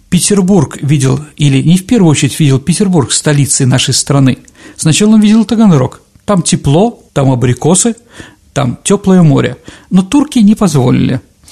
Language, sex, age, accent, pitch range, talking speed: Russian, male, 50-69, native, 140-190 Hz, 140 wpm